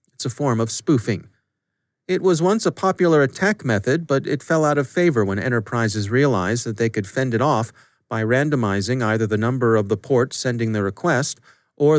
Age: 40-59